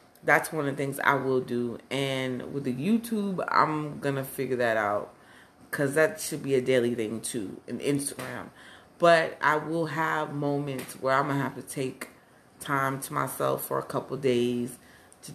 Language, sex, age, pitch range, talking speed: English, female, 30-49, 125-145 Hz, 190 wpm